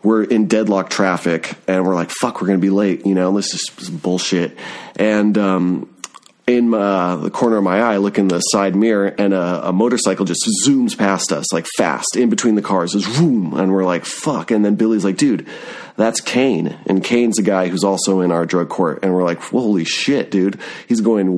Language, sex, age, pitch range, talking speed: English, male, 30-49, 95-110 Hz, 220 wpm